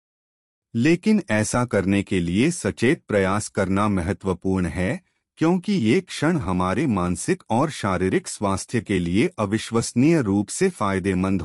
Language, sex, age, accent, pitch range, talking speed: Hindi, male, 30-49, native, 95-145 Hz, 125 wpm